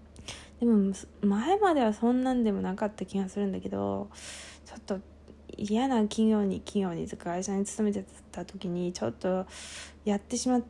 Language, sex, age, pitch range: Japanese, female, 20-39, 185-230 Hz